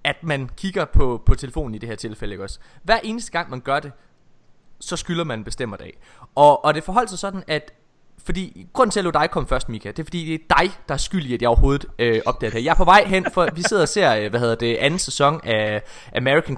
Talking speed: 265 wpm